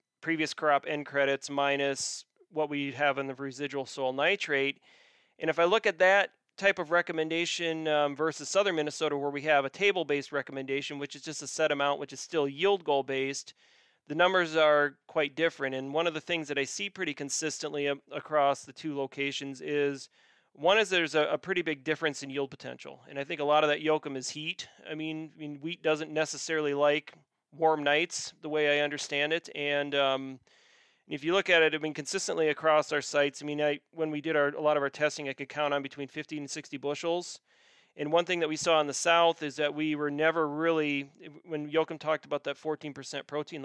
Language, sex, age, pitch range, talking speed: English, male, 30-49, 140-160 Hz, 215 wpm